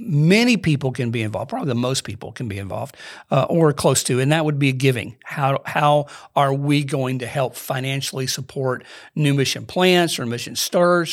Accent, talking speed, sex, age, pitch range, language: American, 200 wpm, male, 50-69, 130-155 Hz, English